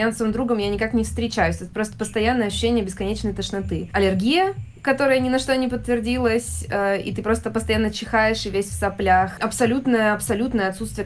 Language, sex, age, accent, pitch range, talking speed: Russian, female, 20-39, native, 195-235 Hz, 170 wpm